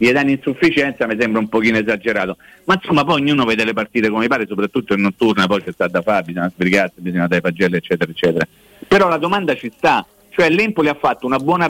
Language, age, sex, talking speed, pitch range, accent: Italian, 50-69, male, 220 wpm, 110-150 Hz, native